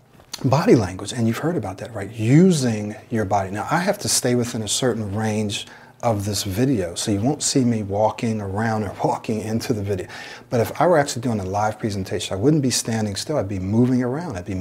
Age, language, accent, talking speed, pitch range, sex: 40-59, English, American, 225 wpm, 105-130 Hz, male